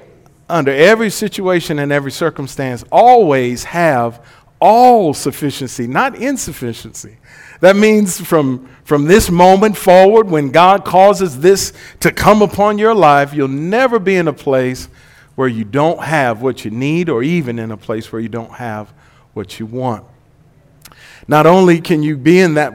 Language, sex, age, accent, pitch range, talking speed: English, male, 50-69, American, 130-185 Hz, 160 wpm